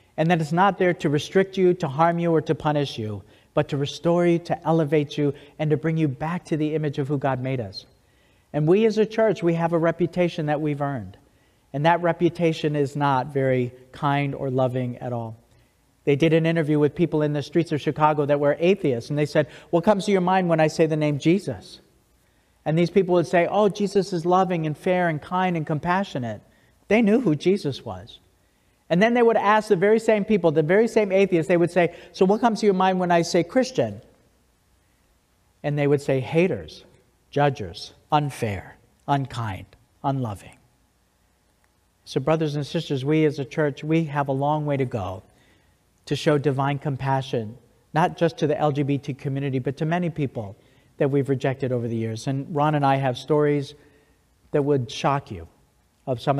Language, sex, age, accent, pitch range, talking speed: English, male, 50-69, American, 130-170 Hz, 200 wpm